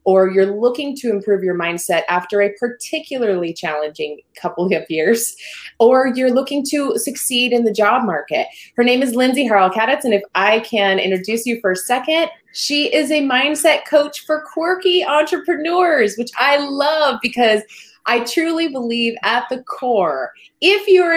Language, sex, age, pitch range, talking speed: English, female, 20-39, 200-285 Hz, 160 wpm